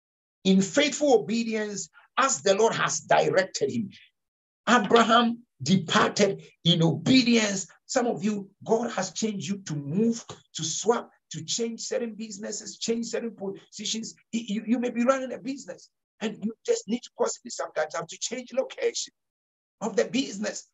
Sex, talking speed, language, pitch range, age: male, 155 wpm, English, 180-235 Hz, 60-79